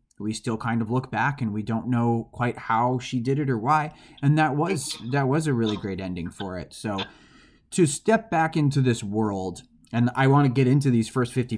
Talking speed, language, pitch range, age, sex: 225 wpm, English, 115-145 Hz, 20-39, male